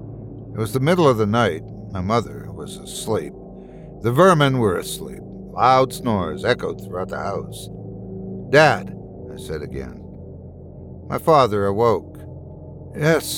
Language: English